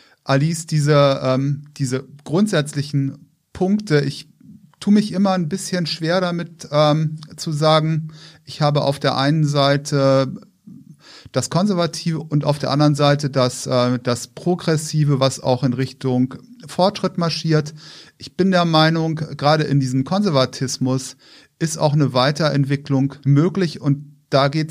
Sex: male